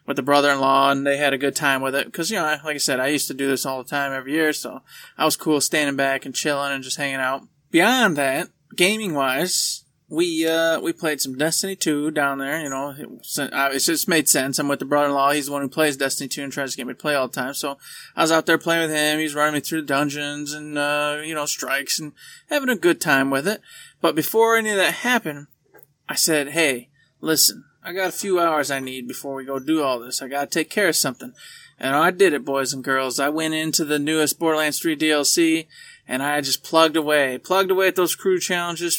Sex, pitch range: male, 145-180 Hz